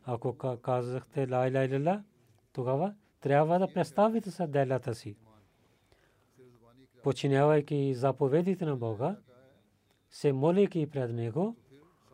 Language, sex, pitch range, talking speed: Bulgarian, male, 125-150 Hz, 95 wpm